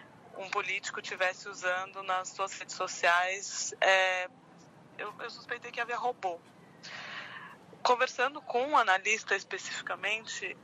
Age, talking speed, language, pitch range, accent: 20-39, 115 wpm, Portuguese, 185-230 Hz, Brazilian